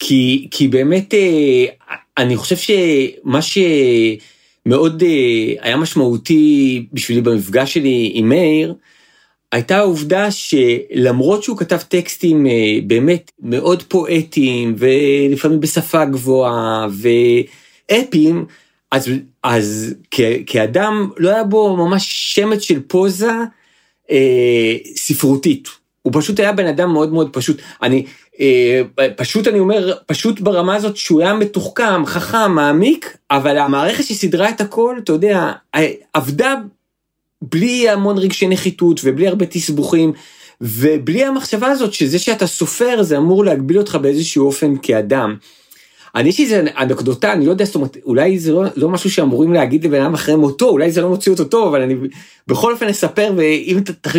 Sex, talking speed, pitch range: male, 130 wpm, 140-200 Hz